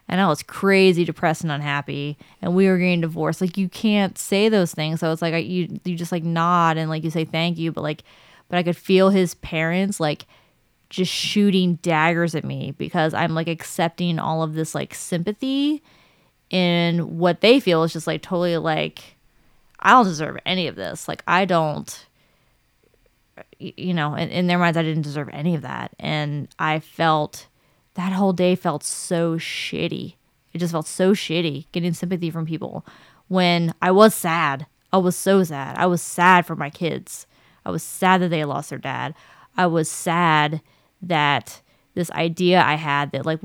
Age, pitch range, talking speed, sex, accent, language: 20-39, 160-180 Hz, 185 wpm, female, American, English